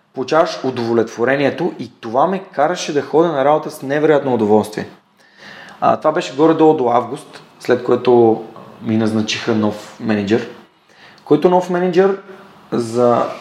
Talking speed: 130 wpm